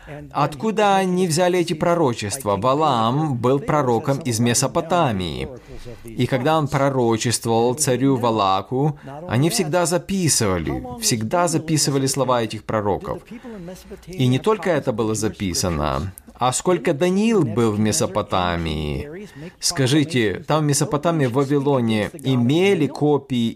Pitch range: 115-165 Hz